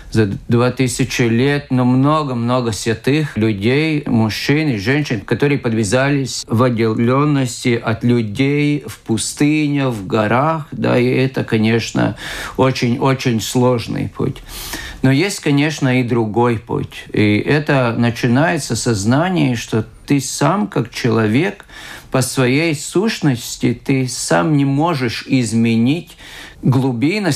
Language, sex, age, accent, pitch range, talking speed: Russian, male, 50-69, native, 120-150 Hz, 115 wpm